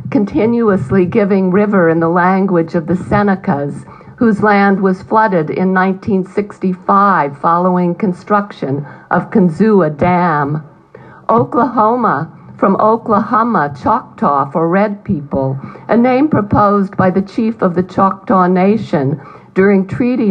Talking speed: 115 wpm